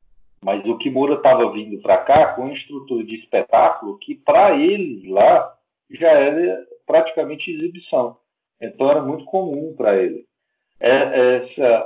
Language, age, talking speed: Portuguese, 40-59, 135 wpm